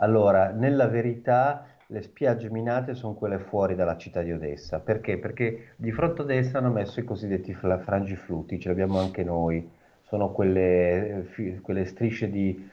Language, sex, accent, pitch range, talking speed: Italian, male, native, 90-110 Hz, 155 wpm